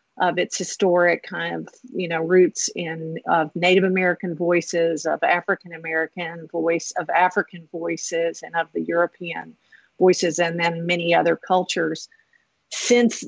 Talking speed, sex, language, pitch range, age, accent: 145 wpm, female, English, 170-220 Hz, 50-69, American